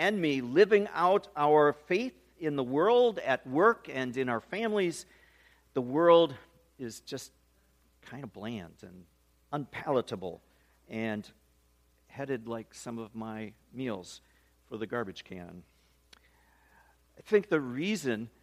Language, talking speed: English, 125 wpm